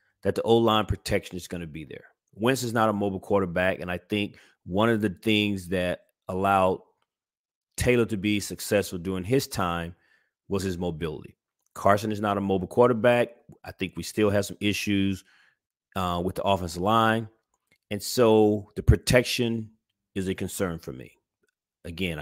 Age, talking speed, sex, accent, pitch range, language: 30-49, 165 wpm, male, American, 90-110 Hz, English